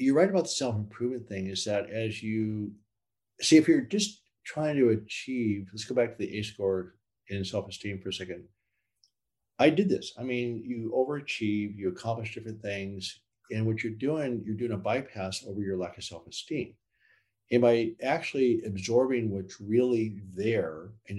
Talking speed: 175 wpm